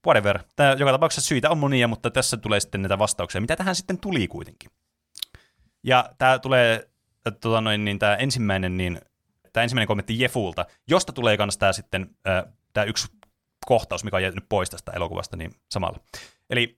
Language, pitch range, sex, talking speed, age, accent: Finnish, 105-130 Hz, male, 180 wpm, 30-49, native